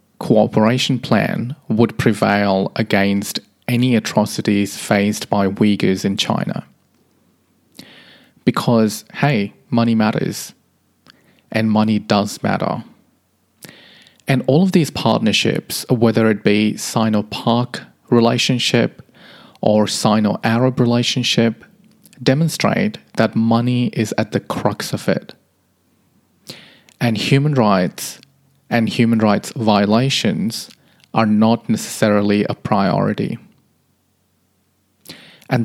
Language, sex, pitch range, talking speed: English, male, 105-120 Hz, 95 wpm